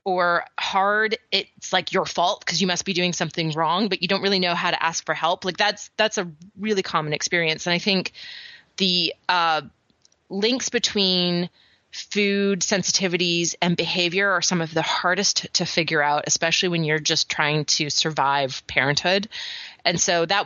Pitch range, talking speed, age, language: 170-210 Hz, 180 wpm, 30-49, English